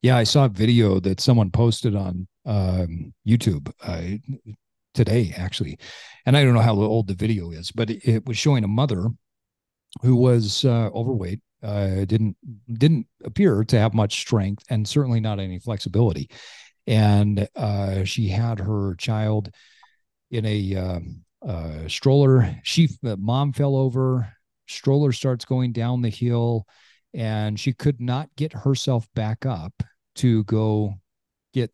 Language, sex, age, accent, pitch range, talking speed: English, male, 40-59, American, 105-130 Hz, 150 wpm